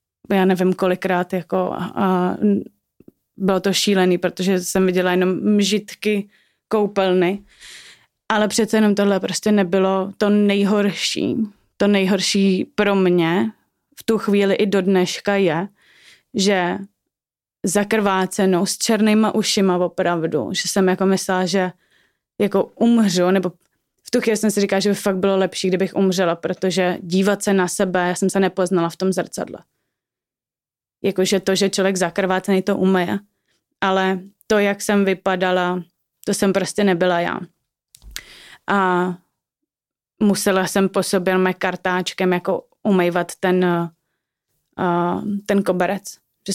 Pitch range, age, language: 180-200 Hz, 20-39, Czech